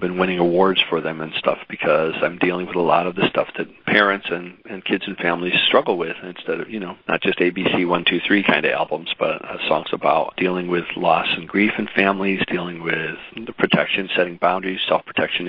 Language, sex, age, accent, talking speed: English, male, 40-59, American, 215 wpm